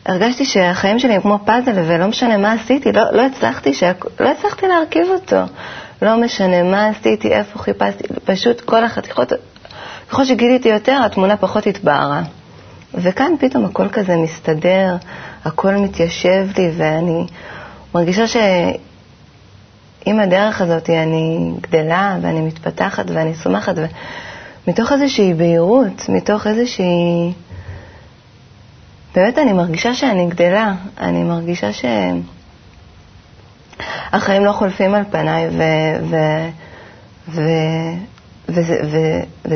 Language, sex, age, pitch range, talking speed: Hebrew, female, 30-49, 160-215 Hz, 115 wpm